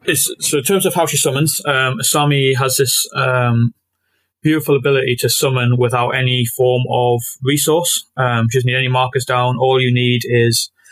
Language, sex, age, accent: English, male, 20-39, British